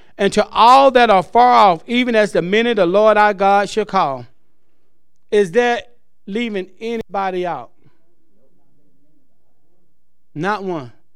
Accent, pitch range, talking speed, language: American, 135-210 Hz, 130 wpm, English